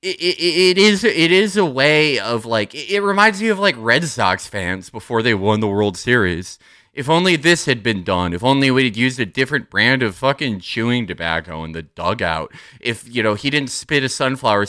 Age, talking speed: 30-49, 215 wpm